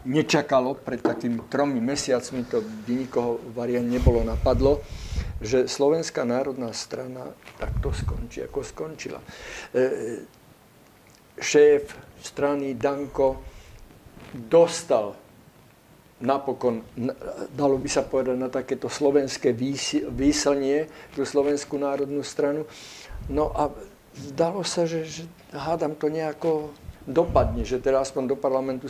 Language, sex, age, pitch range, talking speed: Slovak, male, 50-69, 130-155 Hz, 105 wpm